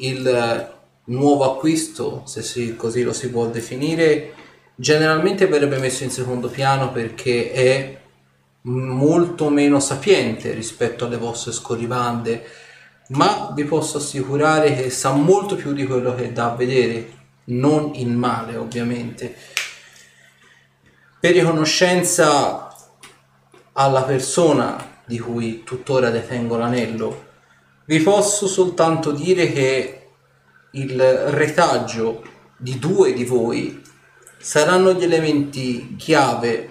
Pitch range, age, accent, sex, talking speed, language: 120-150 Hz, 30-49, native, male, 110 wpm, Italian